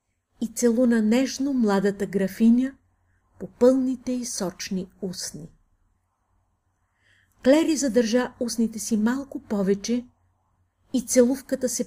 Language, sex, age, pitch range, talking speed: Bulgarian, female, 50-69, 155-245 Hz, 95 wpm